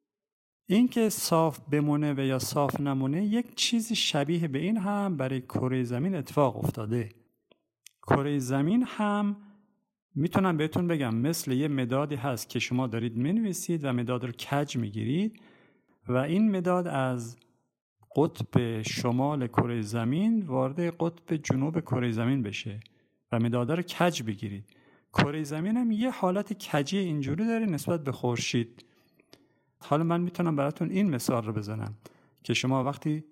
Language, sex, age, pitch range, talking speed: Persian, male, 50-69, 125-180 Hz, 140 wpm